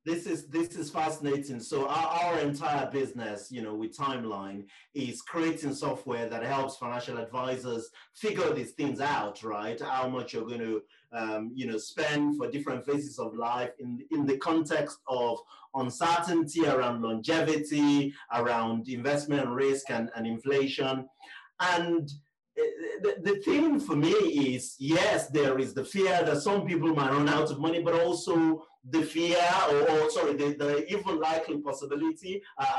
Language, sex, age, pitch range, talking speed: English, male, 30-49, 135-190 Hz, 160 wpm